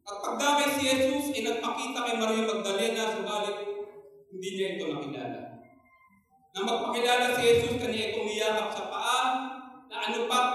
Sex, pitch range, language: male, 210-265 Hz, Filipino